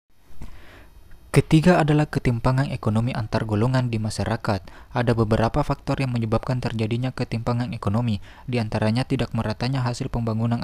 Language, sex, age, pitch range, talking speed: Indonesian, male, 20-39, 110-125 Hz, 120 wpm